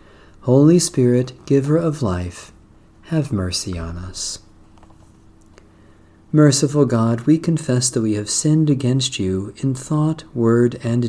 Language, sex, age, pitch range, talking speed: English, male, 40-59, 100-140 Hz, 125 wpm